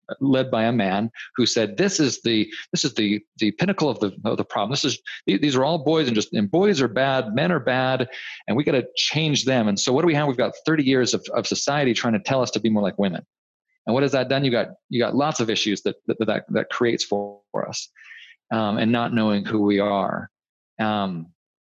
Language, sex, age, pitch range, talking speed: English, male, 40-59, 100-135 Hz, 250 wpm